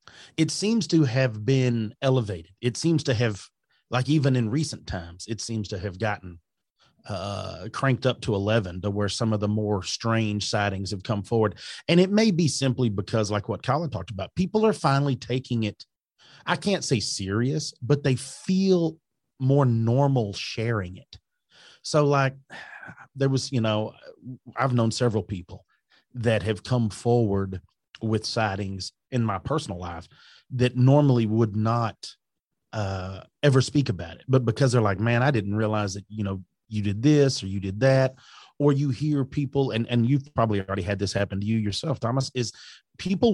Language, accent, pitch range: English, American, 105-140 Hz